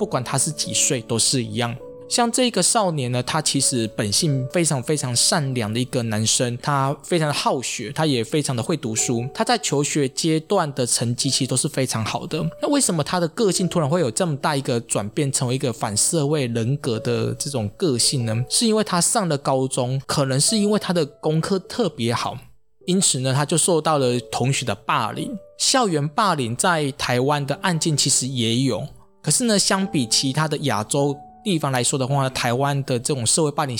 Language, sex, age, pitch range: Chinese, male, 20-39, 125-160 Hz